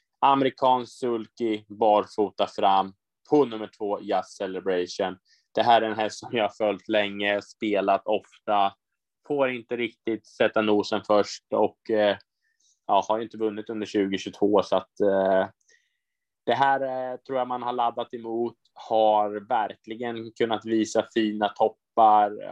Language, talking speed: Swedish, 135 wpm